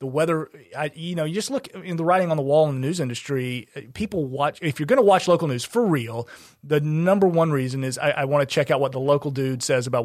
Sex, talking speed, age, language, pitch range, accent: male, 275 wpm, 30-49, English, 130-165 Hz, American